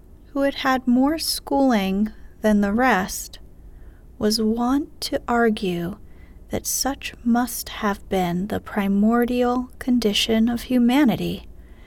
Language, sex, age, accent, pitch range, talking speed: English, female, 30-49, American, 185-240 Hz, 110 wpm